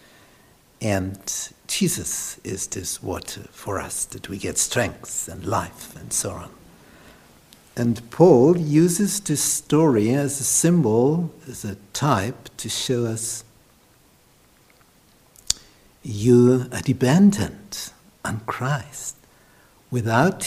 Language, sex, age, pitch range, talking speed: English, male, 60-79, 105-145 Hz, 105 wpm